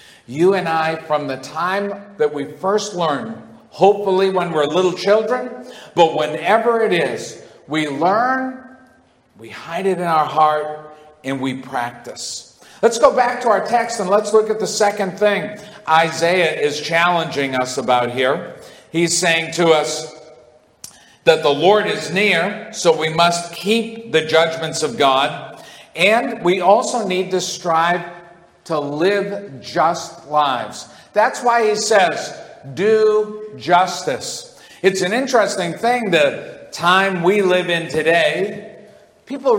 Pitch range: 155-200 Hz